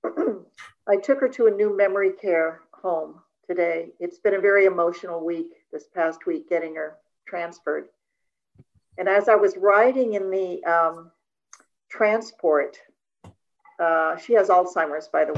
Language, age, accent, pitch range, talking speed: English, 50-69, American, 180-275 Hz, 145 wpm